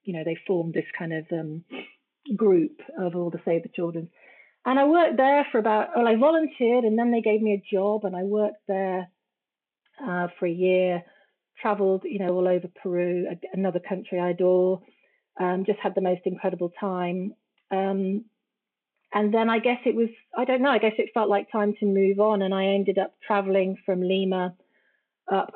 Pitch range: 185-230 Hz